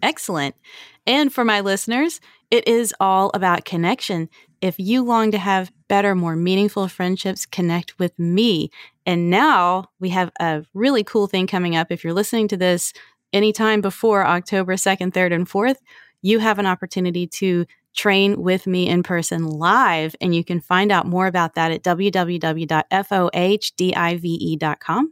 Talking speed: 155 wpm